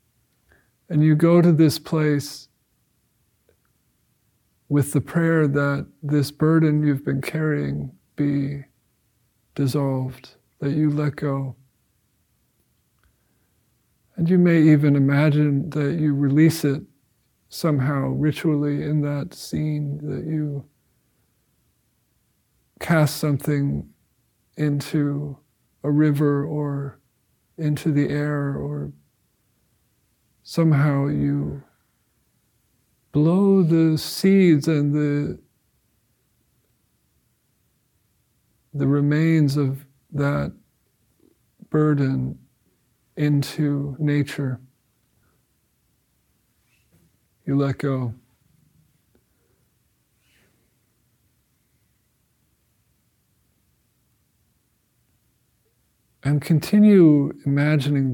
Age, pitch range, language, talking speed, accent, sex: 50-69, 130-150 Hz, English, 70 wpm, American, male